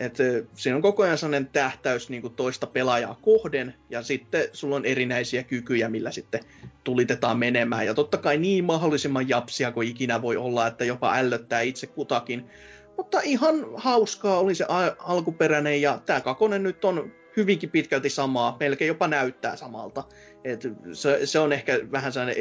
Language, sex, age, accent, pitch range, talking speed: Finnish, male, 20-39, native, 120-165 Hz, 165 wpm